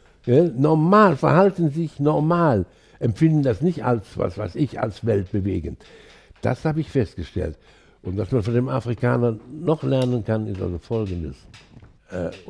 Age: 60-79